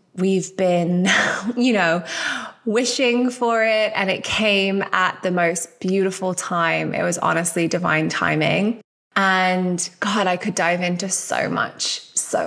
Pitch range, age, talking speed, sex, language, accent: 180-210 Hz, 20-39, 140 wpm, female, English, British